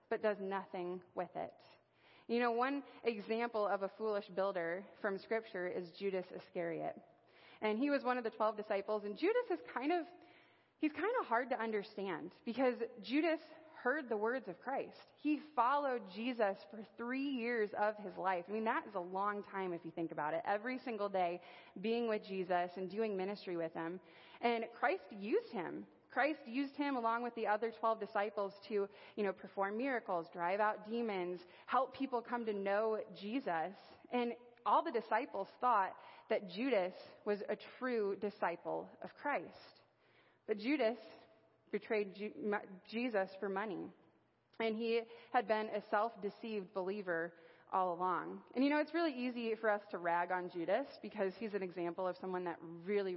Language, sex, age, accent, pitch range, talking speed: English, female, 30-49, American, 190-240 Hz, 170 wpm